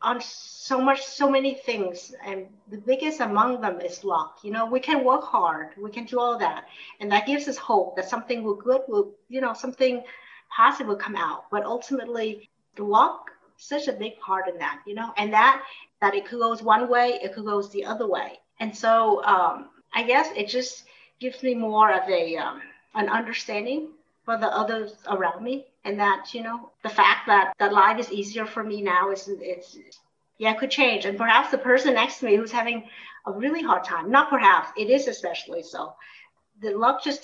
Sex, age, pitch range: female, 50-69, 205-255 Hz